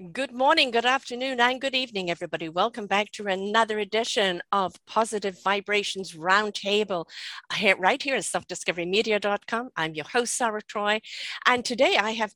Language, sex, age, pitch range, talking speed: English, female, 50-69, 195-245 Hz, 145 wpm